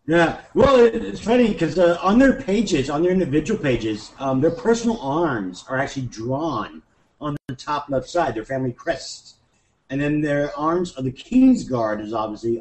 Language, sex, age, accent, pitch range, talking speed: English, male, 50-69, American, 115-170 Hz, 170 wpm